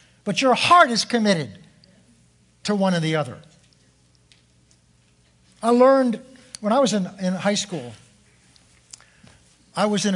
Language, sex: English, male